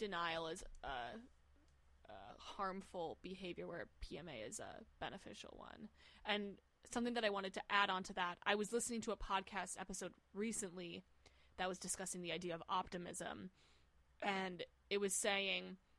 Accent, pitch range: American, 180-205 Hz